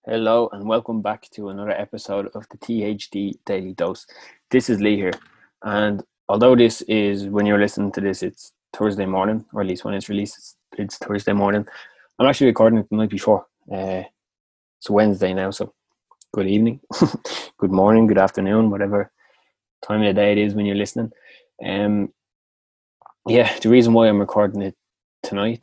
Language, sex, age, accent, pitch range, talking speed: English, male, 20-39, Irish, 95-110 Hz, 175 wpm